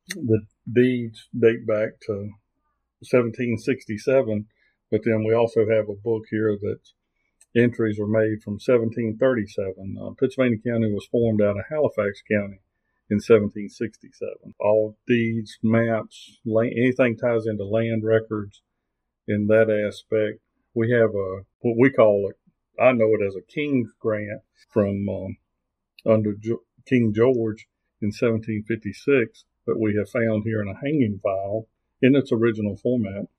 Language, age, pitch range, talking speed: English, 50-69, 105-115 Hz, 140 wpm